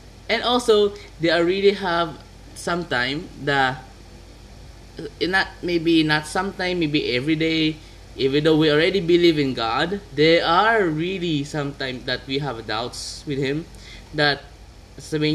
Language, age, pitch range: Filipino, 20-39, 130-195 Hz